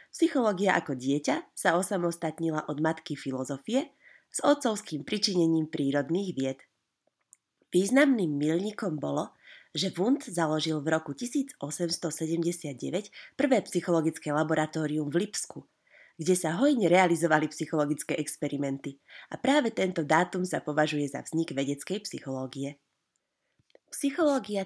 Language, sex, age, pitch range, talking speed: Slovak, female, 20-39, 150-190 Hz, 105 wpm